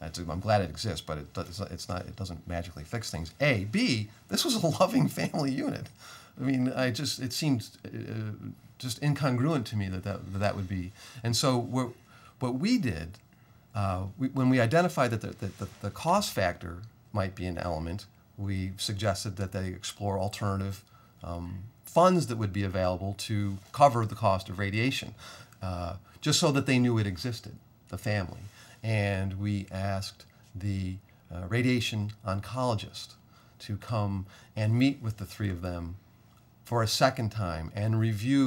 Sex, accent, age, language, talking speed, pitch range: male, American, 40-59, English, 165 wpm, 95-120 Hz